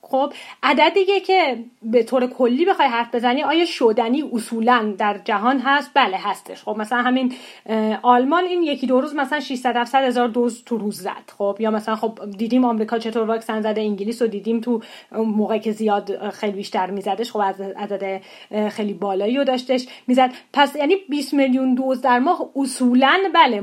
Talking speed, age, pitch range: 175 wpm, 30-49, 210-270 Hz